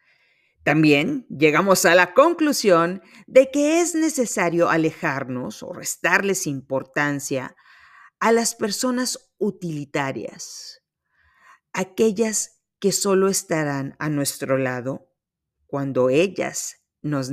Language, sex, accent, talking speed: Spanish, female, Mexican, 95 wpm